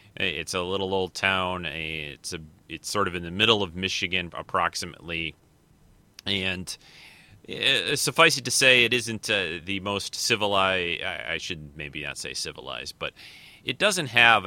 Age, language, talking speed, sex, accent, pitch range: 30-49, English, 160 wpm, male, American, 90-115 Hz